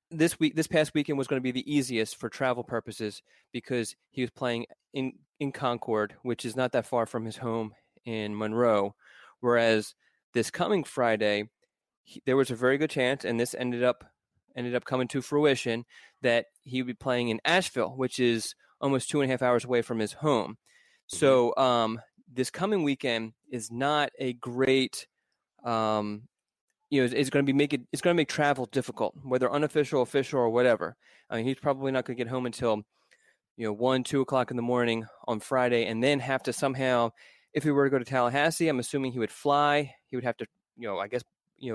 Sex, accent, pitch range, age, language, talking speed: male, American, 120-140 Hz, 20-39, English, 210 wpm